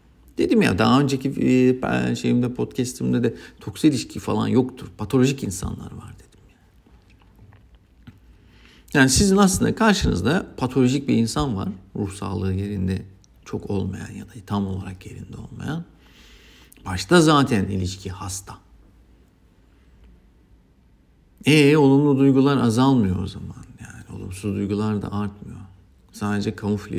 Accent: native